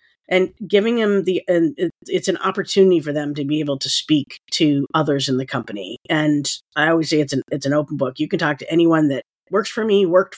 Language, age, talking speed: English, 40-59, 230 wpm